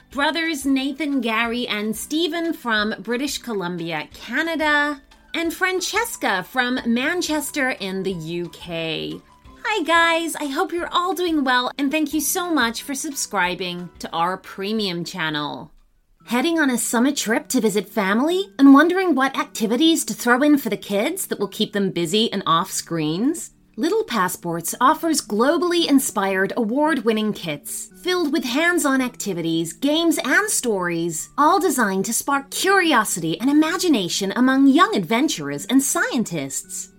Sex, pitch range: female, 195-310 Hz